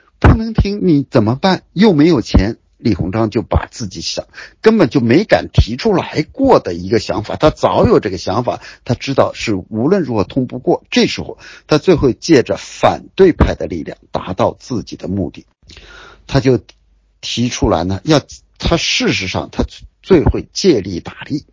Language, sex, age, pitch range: Chinese, male, 50-69, 95-145 Hz